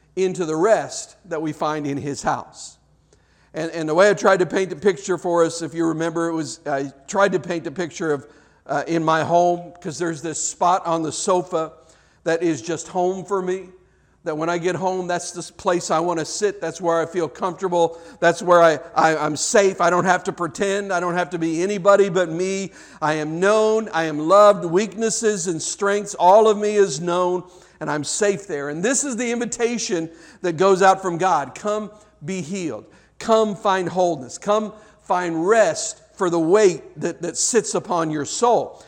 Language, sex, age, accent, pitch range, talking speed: English, male, 50-69, American, 160-195 Hz, 200 wpm